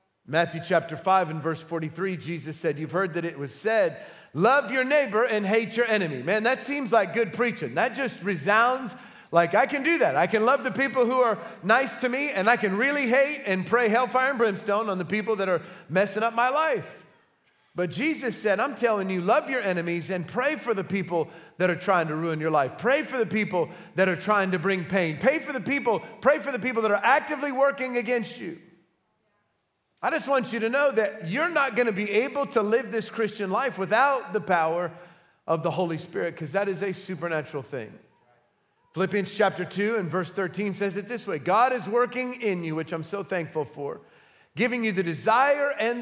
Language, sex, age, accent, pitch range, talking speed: English, male, 40-59, American, 175-245 Hz, 210 wpm